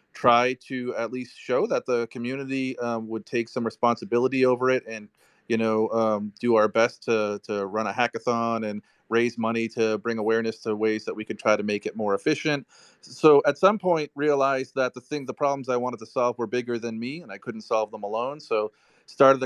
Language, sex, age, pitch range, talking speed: English, male, 30-49, 115-135 Hz, 215 wpm